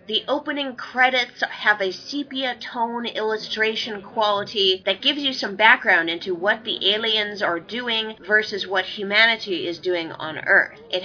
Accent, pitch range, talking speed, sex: American, 190-260 Hz, 150 wpm, female